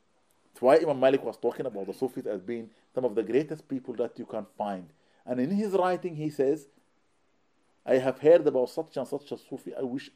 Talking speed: 220 wpm